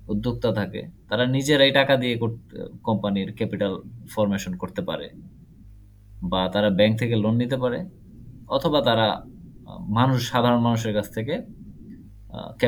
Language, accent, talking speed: Bengali, native, 85 wpm